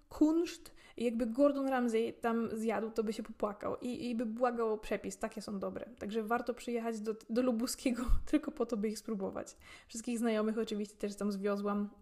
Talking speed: 185 wpm